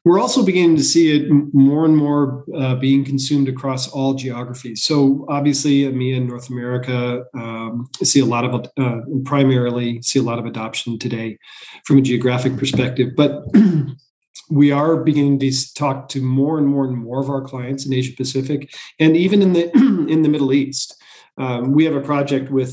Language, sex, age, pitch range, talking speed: English, male, 40-59, 125-145 Hz, 185 wpm